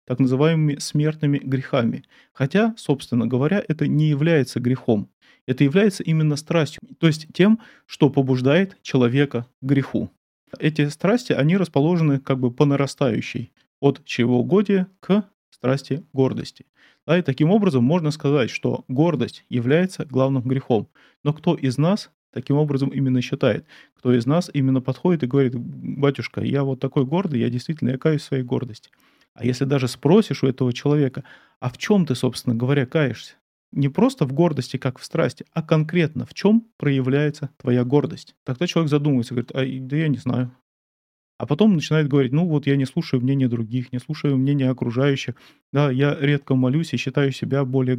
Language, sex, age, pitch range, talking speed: Russian, male, 30-49, 130-155 Hz, 165 wpm